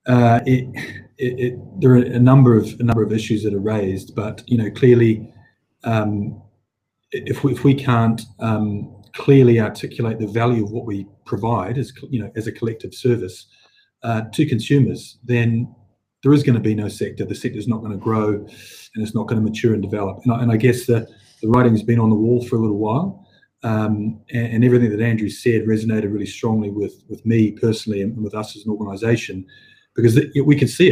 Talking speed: 210 wpm